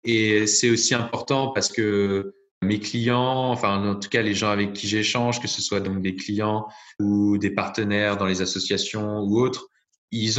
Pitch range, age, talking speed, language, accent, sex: 100-125 Hz, 20-39, 185 wpm, French, French, male